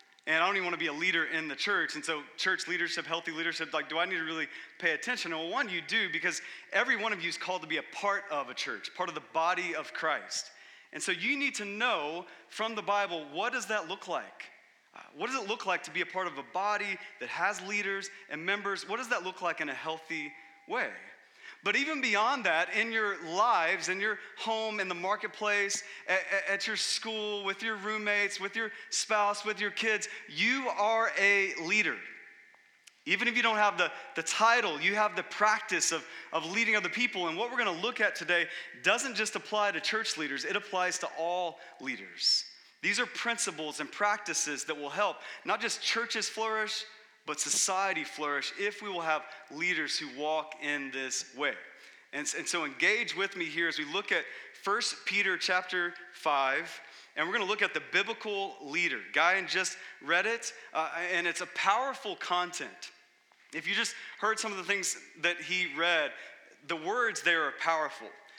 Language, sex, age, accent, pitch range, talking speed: English, male, 30-49, American, 170-215 Hz, 205 wpm